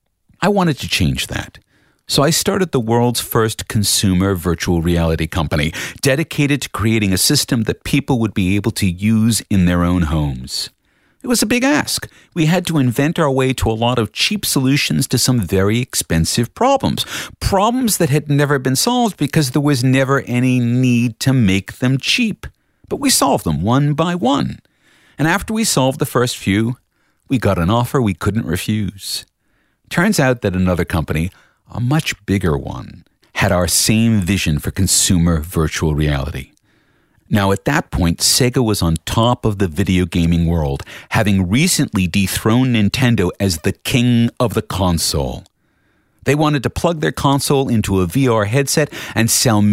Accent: American